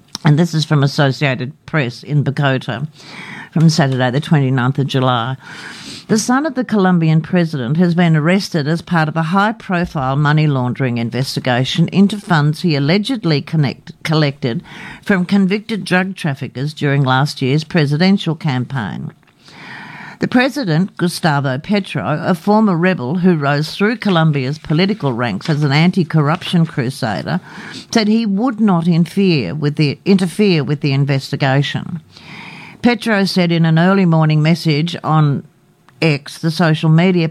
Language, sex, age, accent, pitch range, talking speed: English, female, 60-79, Australian, 145-185 Hz, 130 wpm